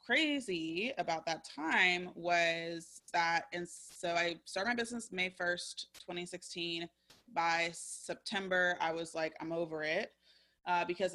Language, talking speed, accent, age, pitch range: English, 135 wpm, American, 20-39, 165-190 Hz